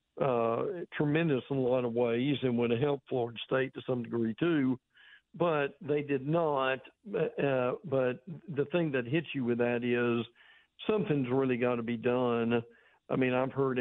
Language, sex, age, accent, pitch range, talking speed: English, male, 60-79, American, 125-145 Hz, 180 wpm